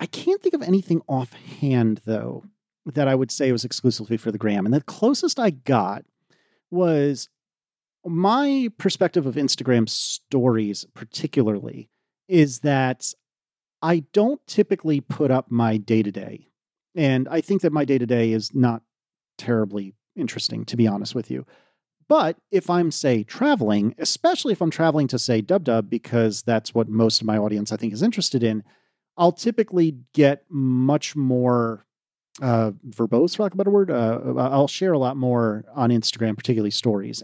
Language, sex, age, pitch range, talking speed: English, male, 40-59, 115-170 Hz, 170 wpm